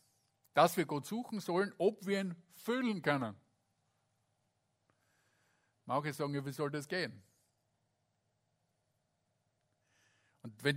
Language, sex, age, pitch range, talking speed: German, male, 50-69, 135-180 Hz, 100 wpm